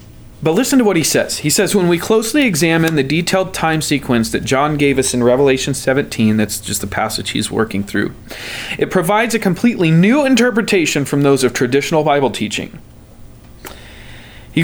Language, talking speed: English, 175 wpm